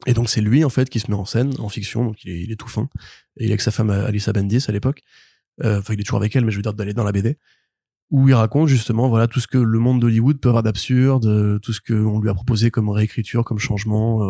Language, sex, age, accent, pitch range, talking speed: French, male, 20-39, French, 105-125 Hz, 295 wpm